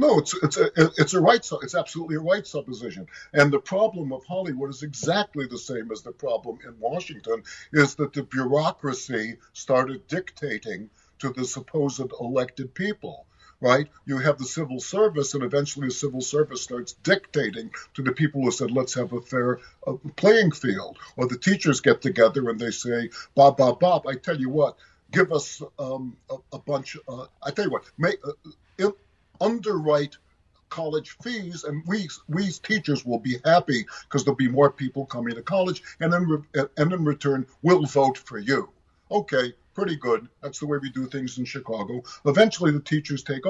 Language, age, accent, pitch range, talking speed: English, 50-69, American, 130-165 Hz, 180 wpm